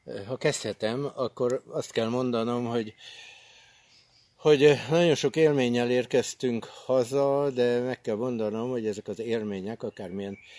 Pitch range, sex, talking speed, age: 105-125 Hz, male, 125 wpm, 60-79